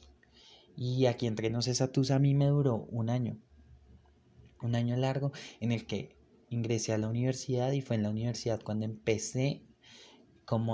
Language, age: Spanish, 20-39